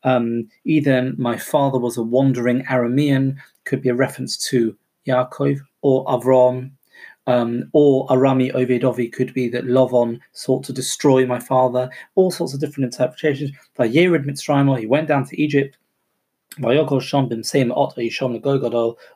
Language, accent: English, British